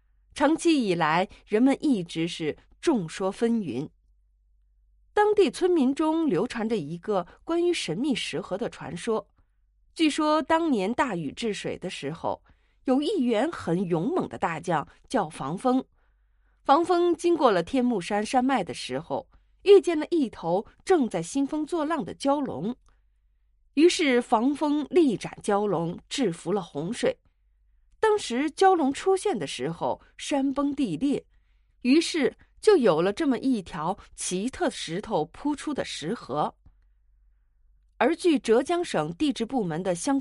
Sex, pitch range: female, 200-320 Hz